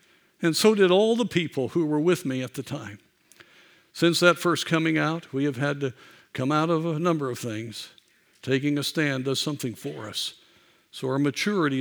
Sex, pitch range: male, 120-145 Hz